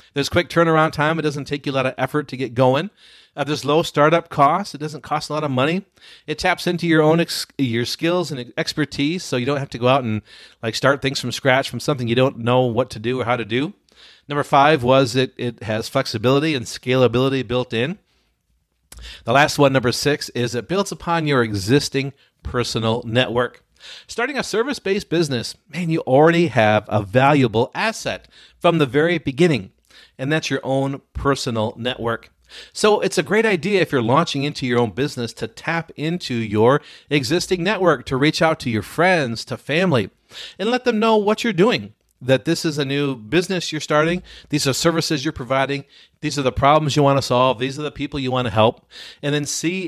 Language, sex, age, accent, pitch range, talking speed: English, male, 40-59, American, 125-160 Hz, 205 wpm